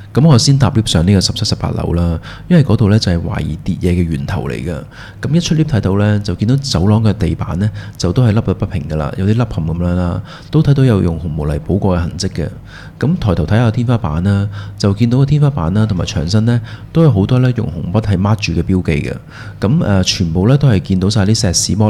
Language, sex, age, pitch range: Chinese, male, 30-49, 90-115 Hz